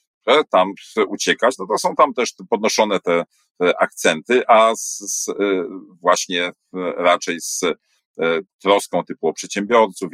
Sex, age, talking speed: male, 40-59, 130 wpm